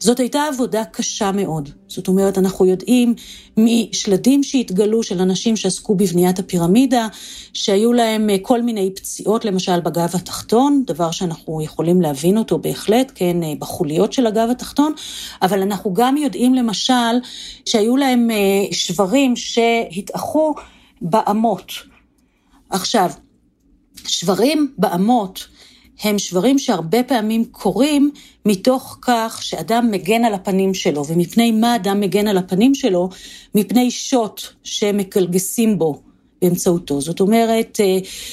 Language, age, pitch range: Hebrew, 40-59, 195-245 Hz